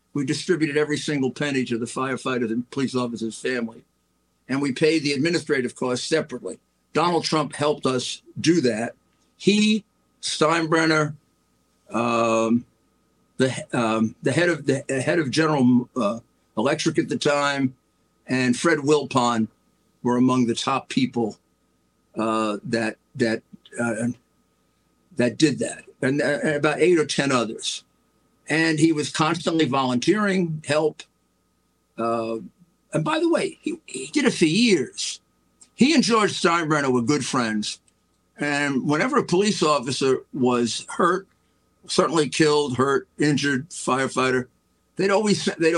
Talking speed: 140 wpm